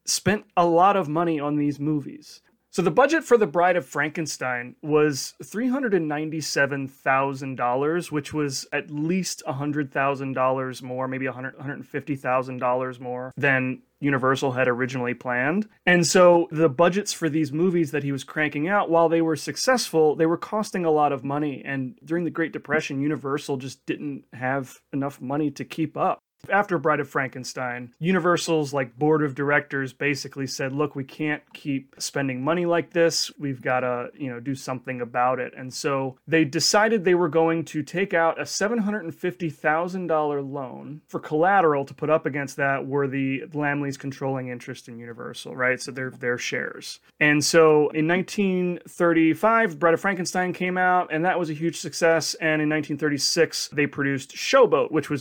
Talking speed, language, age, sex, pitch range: 160 wpm, English, 30-49, male, 135-165 Hz